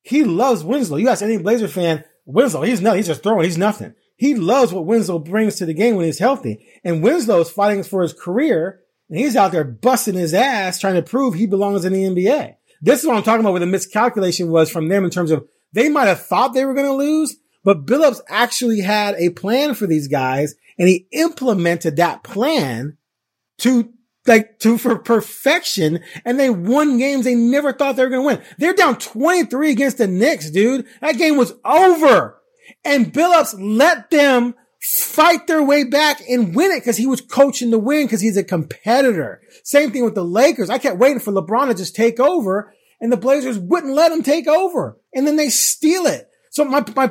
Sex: male